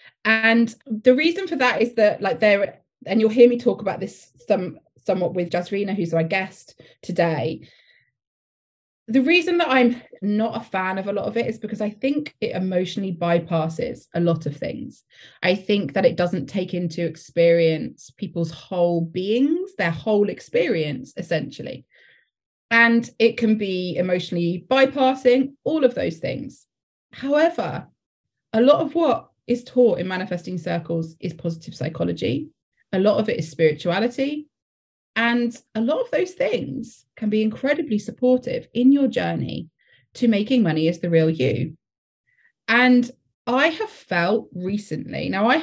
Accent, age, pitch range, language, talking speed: British, 20-39, 175-250 Hz, English, 155 wpm